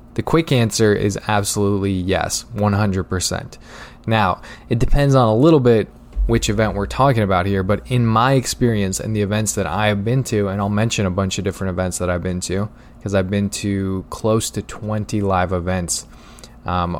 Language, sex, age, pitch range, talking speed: English, male, 20-39, 100-120 Hz, 190 wpm